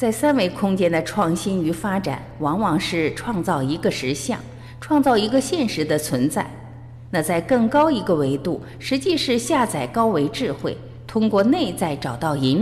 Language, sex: Chinese, female